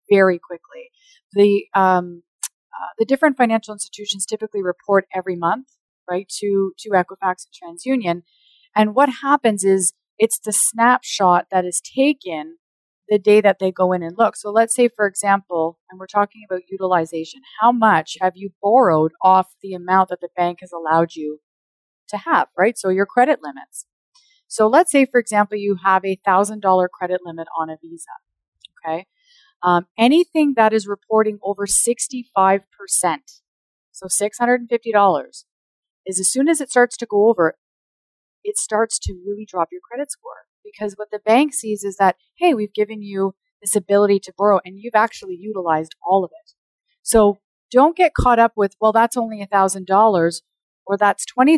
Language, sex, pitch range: English, female, 185-235 Hz